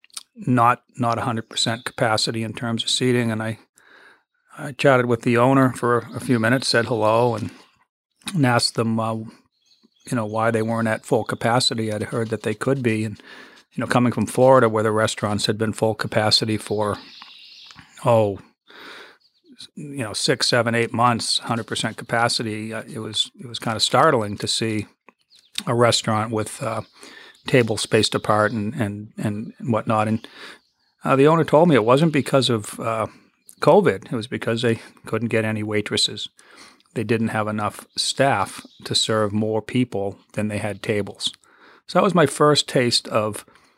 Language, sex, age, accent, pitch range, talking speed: English, male, 40-59, American, 110-125 Hz, 170 wpm